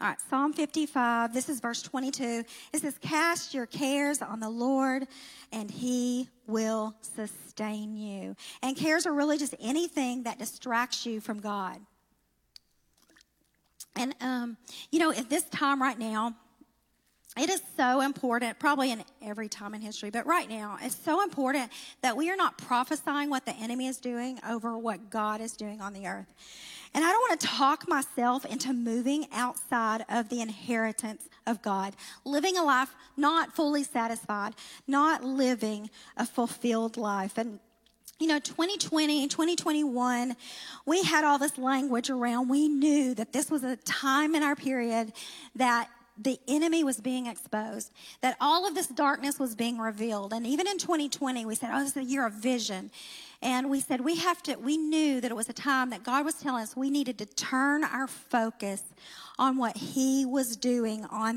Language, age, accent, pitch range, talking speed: English, 50-69, American, 230-290 Hz, 175 wpm